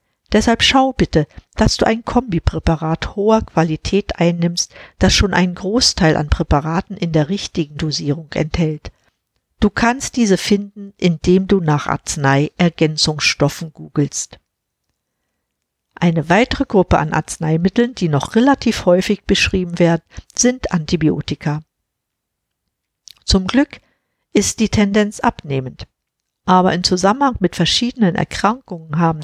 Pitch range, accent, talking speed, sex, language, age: 160-210 Hz, German, 115 wpm, female, German, 50-69